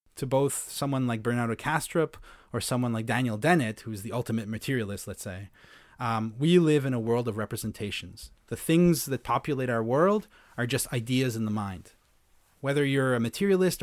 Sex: male